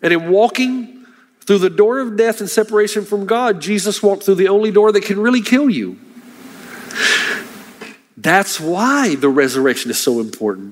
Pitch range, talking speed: 140-225 Hz, 170 wpm